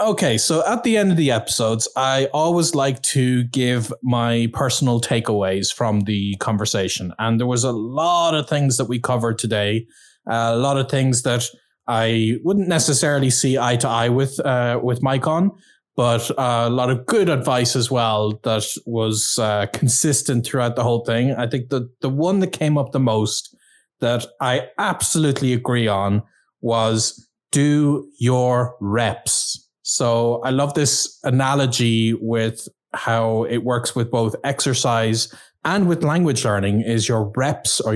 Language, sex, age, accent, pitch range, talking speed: English, male, 20-39, Irish, 115-145 Hz, 160 wpm